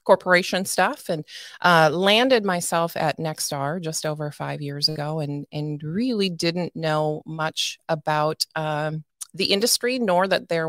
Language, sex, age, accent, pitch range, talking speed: English, female, 30-49, American, 145-170 Hz, 145 wpm